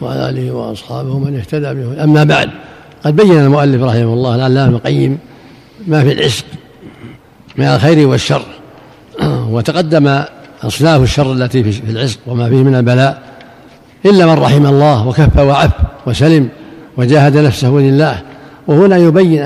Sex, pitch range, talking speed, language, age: male, 135-155 Hz, 130 wpm, Arabic, 60-79